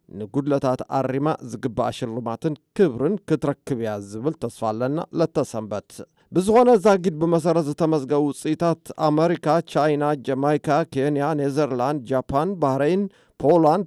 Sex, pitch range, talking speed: male, 130-170 Hz, 110 wpm